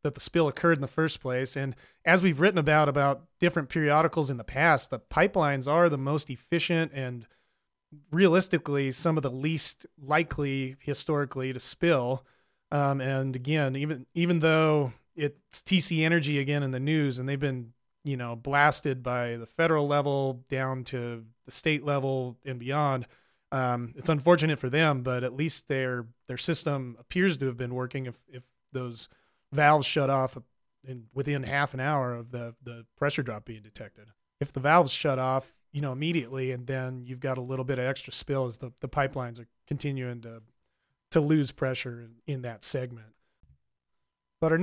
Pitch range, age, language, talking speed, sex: 130-155 Hz, 30-49, English, 180 wpm, male